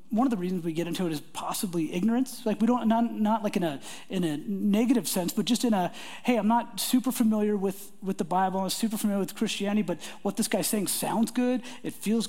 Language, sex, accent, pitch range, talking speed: English, male, American, 185-230 Hz, 245 wpm